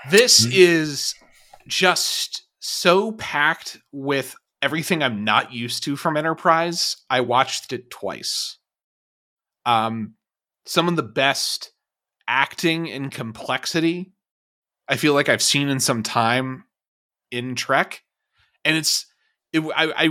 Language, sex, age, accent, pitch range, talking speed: English, male, 30-49, American, 115-165 Hz, 120 wpm